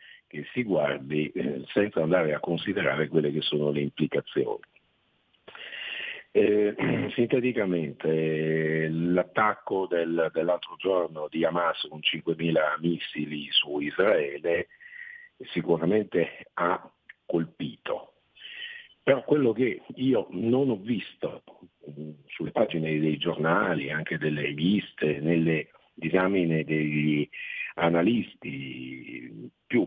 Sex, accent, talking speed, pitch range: male, native, 95 wpm, 80-120 Hz